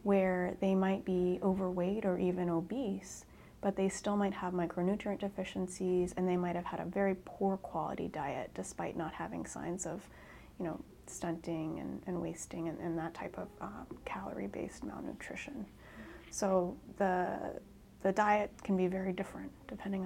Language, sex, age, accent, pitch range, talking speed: English, female, 30-49, American, 175-200 Hz, 160 wpm